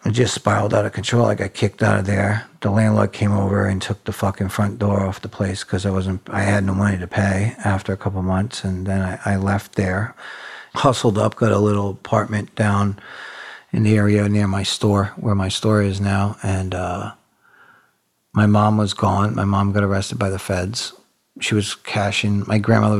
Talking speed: 210 wpm